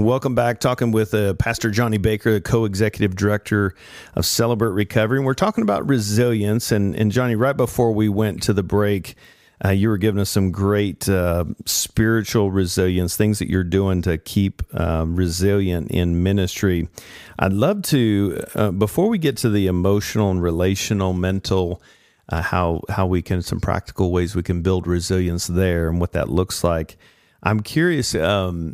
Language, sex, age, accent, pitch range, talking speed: English, male, 40-59, American, 90-110 Hz, 175 wpm